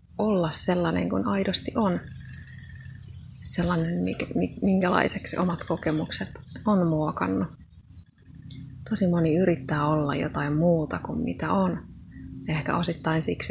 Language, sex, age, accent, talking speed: Finnish, female, 30-49, native, 100 wpm